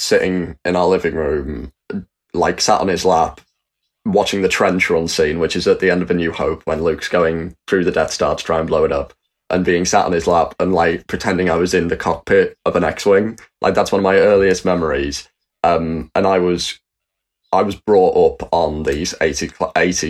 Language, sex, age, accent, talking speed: English, male, 20-39, British, 215 wpm